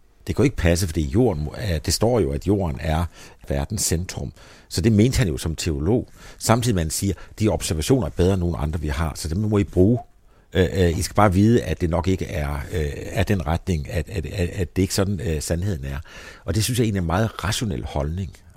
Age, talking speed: 60-79, 230 wpm